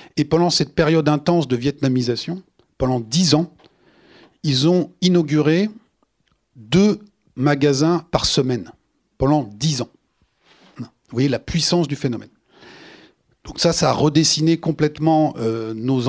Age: 40-59